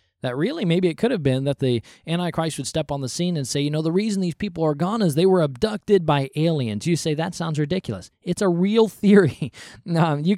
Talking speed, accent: 245 wpm, American